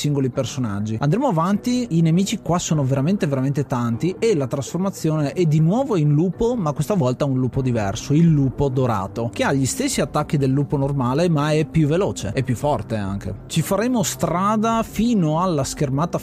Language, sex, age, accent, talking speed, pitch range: Italian, male, 30-49, native, 185 wpm, 135-175 Hz